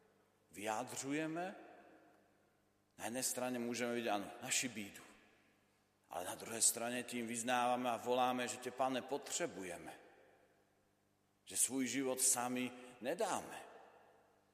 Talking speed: 105 wpm